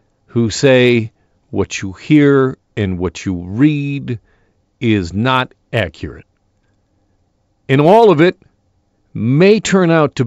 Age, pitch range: 50-69, 100-145 Hz